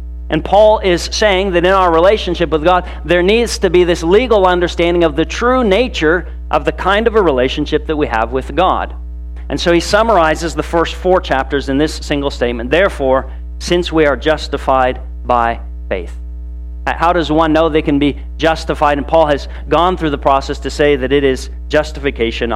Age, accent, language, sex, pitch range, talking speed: 40-59, American, English, male, 115-165 Hz, 190 wpm